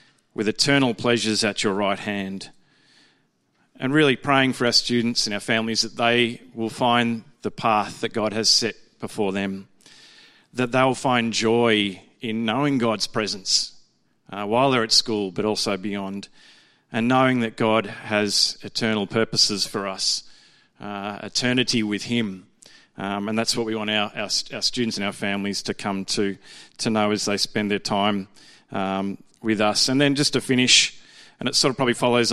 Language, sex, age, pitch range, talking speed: English, male, 40-59, 105-120 Hz, 175 wpm